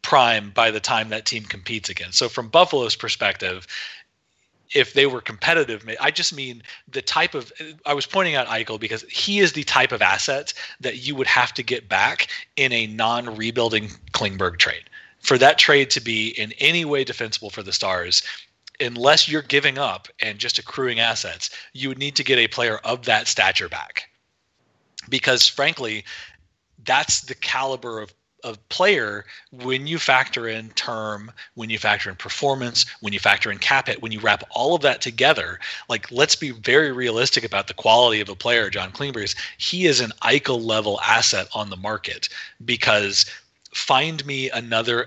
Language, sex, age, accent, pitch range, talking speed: English, male, 30-49, American, 110-135 Hz, 180 wpm